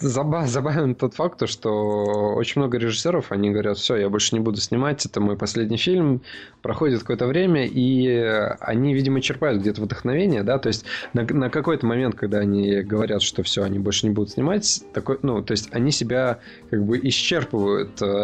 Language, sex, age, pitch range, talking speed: Russian, male, 20-39, 105-125 Hz, 175 wpm